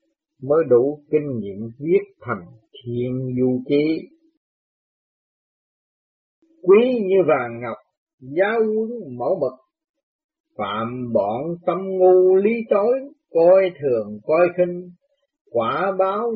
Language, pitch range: Vietnamese, 140-205 Hz